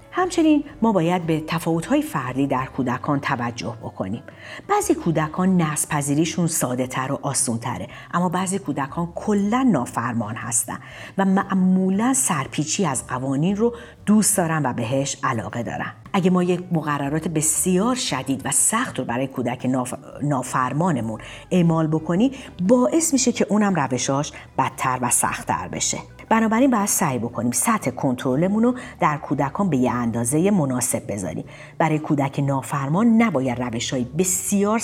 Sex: female